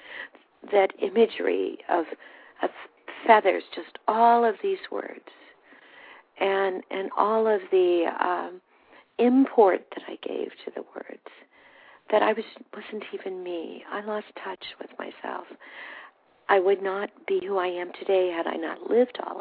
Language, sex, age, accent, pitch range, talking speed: English, female, 50-69, American, 190-280 Hz, 145 wpm